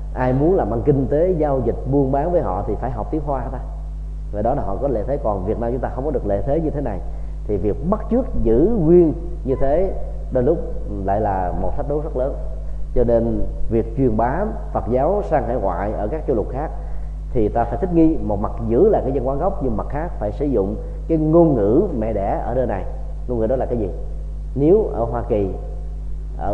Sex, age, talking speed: male, 20-39, 245 wpm